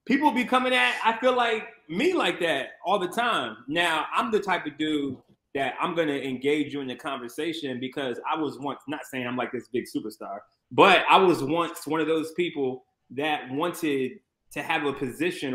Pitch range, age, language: 140-180 Hz, 20-39, English